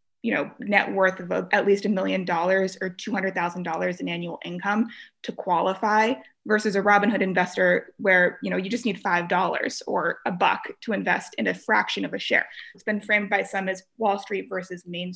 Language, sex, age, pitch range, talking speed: English, female, 20-39, 195-240 Hz, 195 wpm